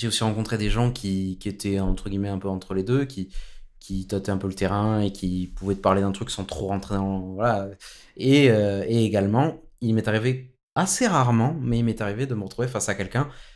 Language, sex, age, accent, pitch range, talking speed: French, male, 20-39, French, 95-115 Hz, 240 wpm